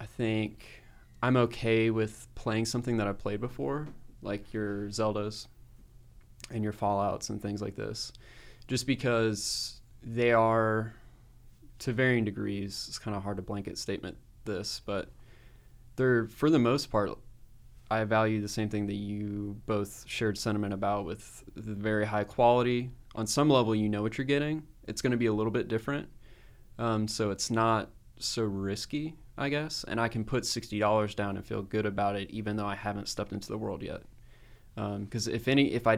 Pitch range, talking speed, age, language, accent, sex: 105-120 Hz, 180 wpm, 20-39, English, American, male